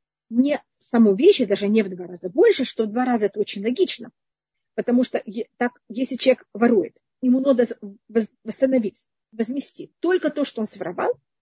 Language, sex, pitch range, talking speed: Russian, female, 215-290 Hz, 165 wpm